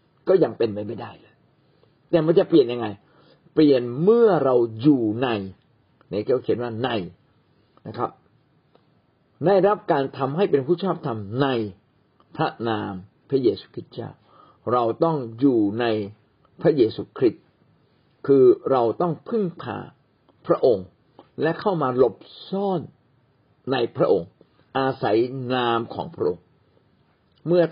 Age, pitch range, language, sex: 50-69, 115-170 Hz, Thai, male